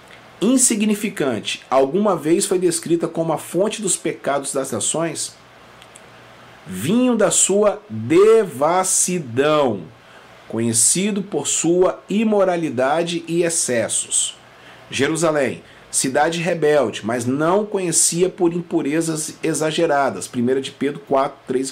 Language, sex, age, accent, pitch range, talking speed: Portuguese, male, 40-59, Brazilian, 145-190 Hz, 95 wpm